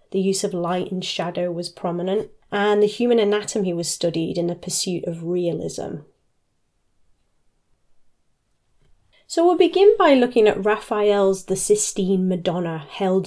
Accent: British